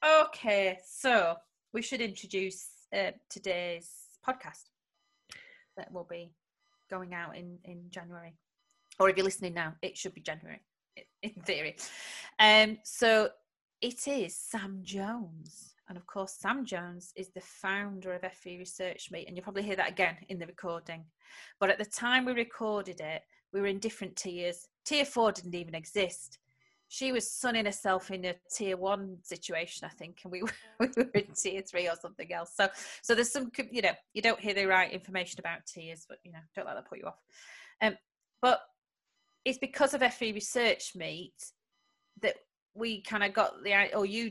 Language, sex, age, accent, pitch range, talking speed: English, female, 30-49, British, 180-220 Hz, 180 wpm